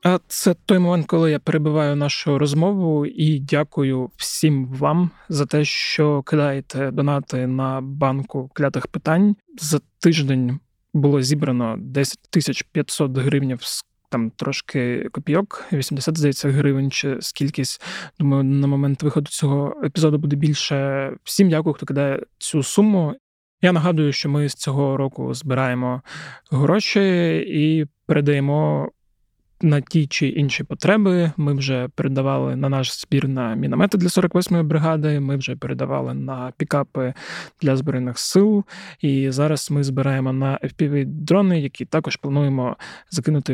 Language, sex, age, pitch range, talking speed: Ukrainian, male, 20-39, 135-160 Hz, 135 wpm